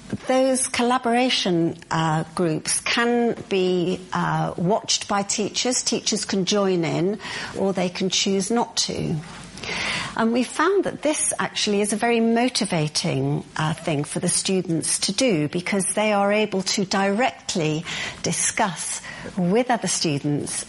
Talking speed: 135 wpm